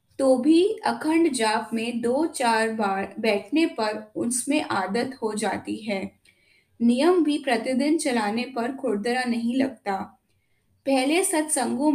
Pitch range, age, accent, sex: 215-270 Hz, 10-29, native, female